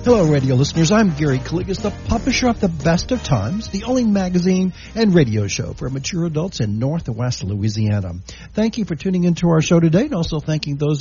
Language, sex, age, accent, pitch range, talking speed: English, male, 60-79, American, 120-195 Hz, 200 wpm